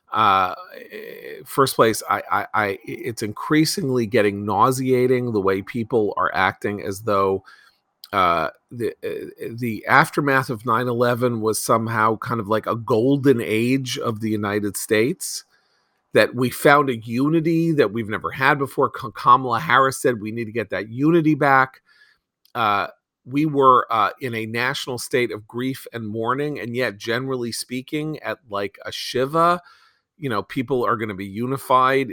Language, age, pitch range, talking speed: English, 40-59, 110-140 Hz, 155 wpm